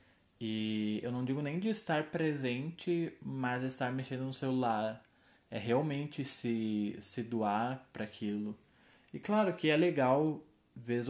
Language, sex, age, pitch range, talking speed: Portuguese, male, 20-39, 115-140 Hz, 135 wpm